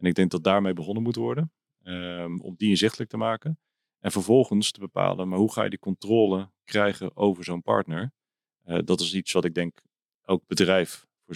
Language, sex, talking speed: Dutch, male, 195 wpm